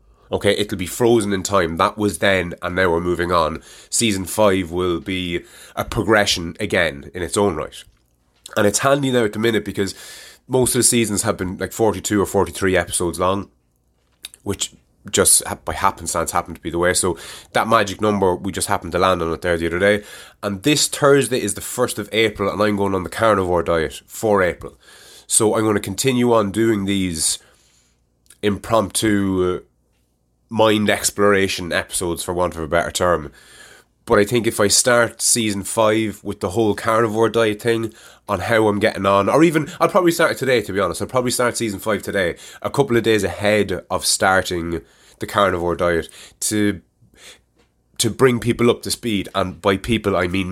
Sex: male